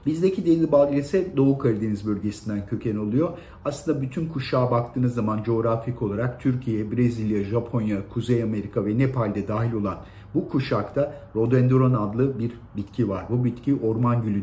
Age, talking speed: 50-69, 145 wpm